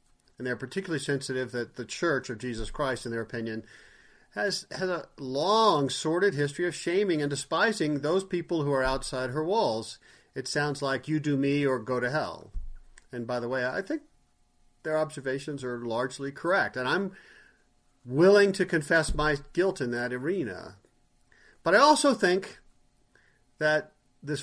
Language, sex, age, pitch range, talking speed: English, male, 40-59, 130-170 Hz, 165 wpm